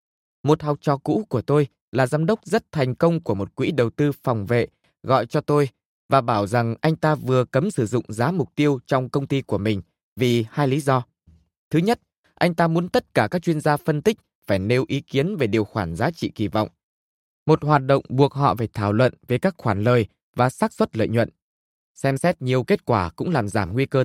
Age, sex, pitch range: 20-39, male, 120-155 Hz